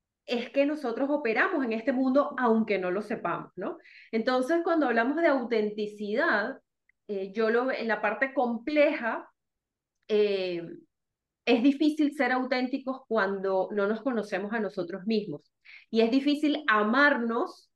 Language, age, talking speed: Spanish, 30-49, 135 wpm